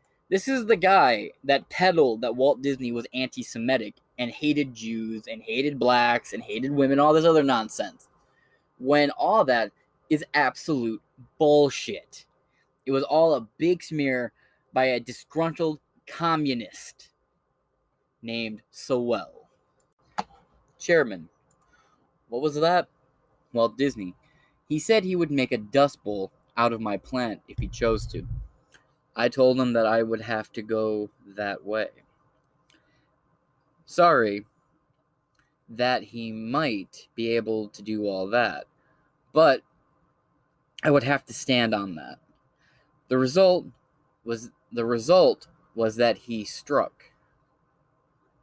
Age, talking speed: 20-39, 130 wpm